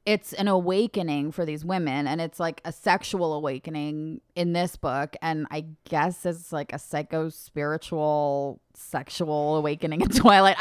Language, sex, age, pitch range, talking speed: English, female, 20-39, 160-210 Hz, 155 wpm